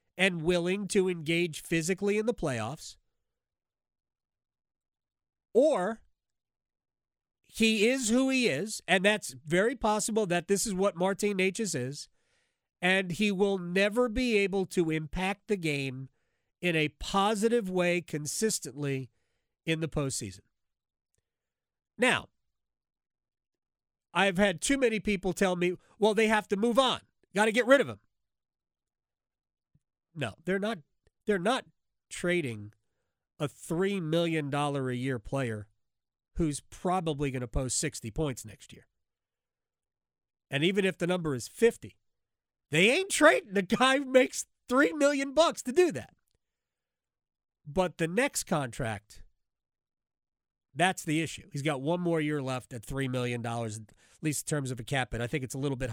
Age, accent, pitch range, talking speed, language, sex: 40-59, American, 135-205 Hz, 145 wpm, English, male